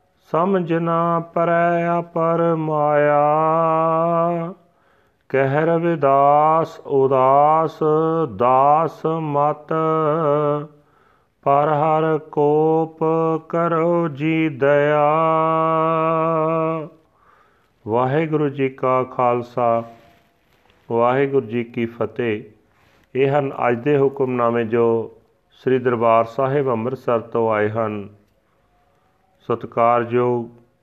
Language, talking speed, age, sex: Punjabi, 75 wpm, 40-59, male